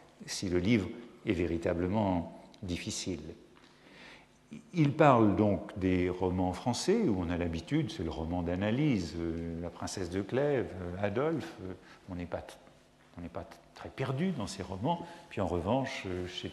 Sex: male